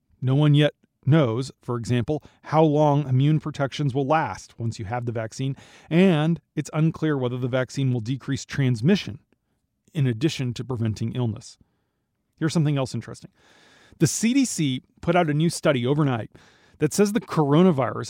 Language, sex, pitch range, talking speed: English, male, 125-155 Hz, 155 wpm